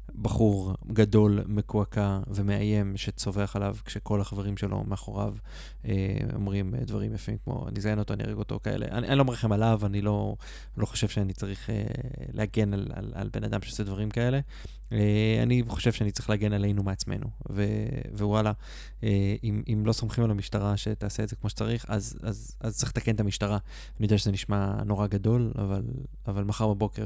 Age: 20-39